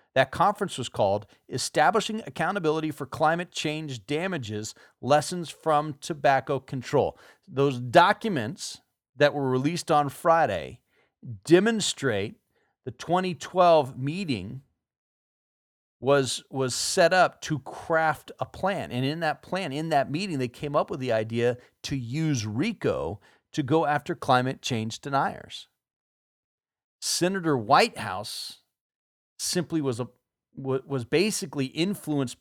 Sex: male